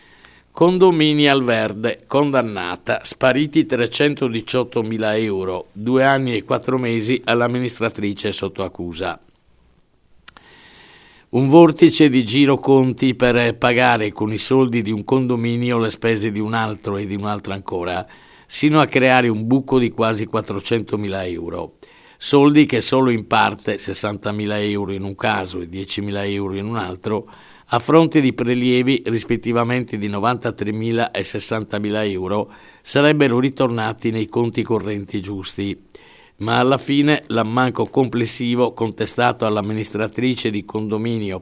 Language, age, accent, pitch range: Italian, 50-69, native, 105-125 Hz